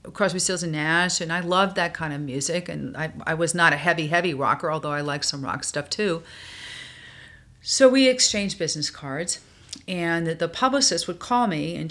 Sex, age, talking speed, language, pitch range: female, 40-59, 195 wpm, English, 155-200 Hz